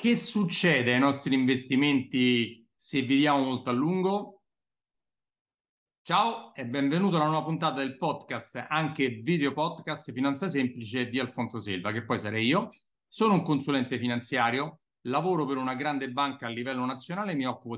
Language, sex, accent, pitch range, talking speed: Italian, male, native, 125-160 Hz, 150 wpm